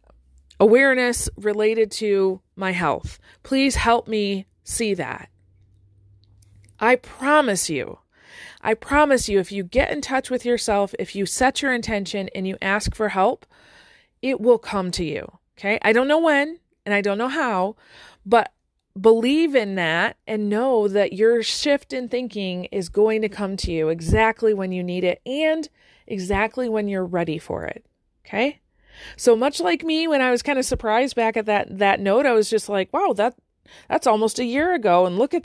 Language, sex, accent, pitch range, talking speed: English, female, American, 195-255 Hz, 180 wpm